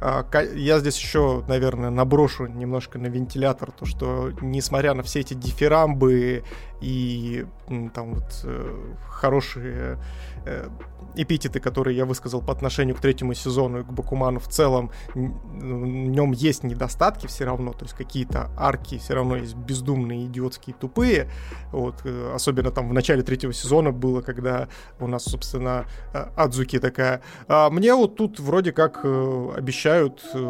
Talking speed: 140 wpm